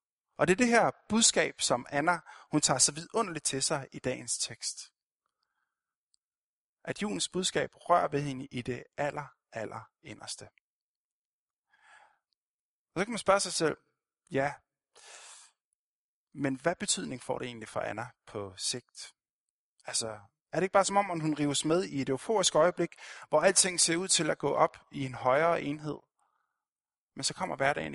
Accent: native